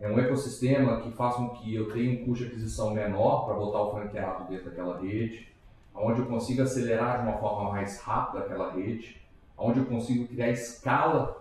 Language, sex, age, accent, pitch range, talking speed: Portuguese, male, 40-59, Brazilian, 105-135 Hz, 195 wpm